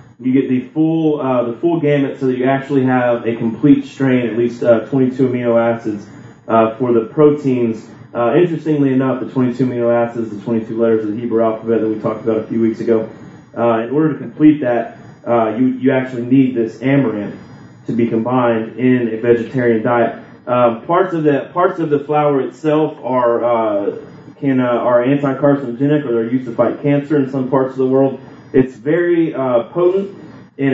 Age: 30-49